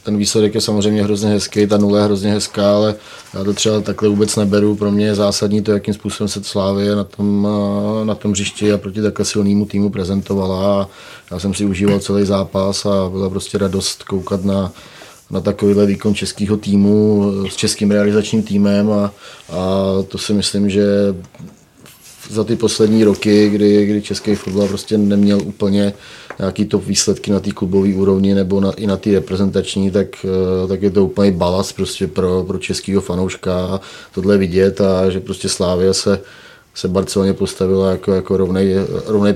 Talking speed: 170 wpm